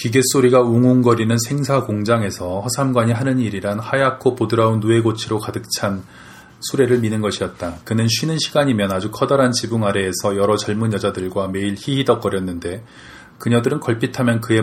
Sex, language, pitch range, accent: male, Korean, 100-120 Hz, native